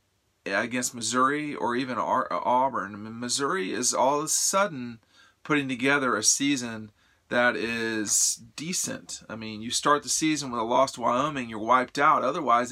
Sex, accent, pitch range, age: male, American, 110-140 Hz, 40-59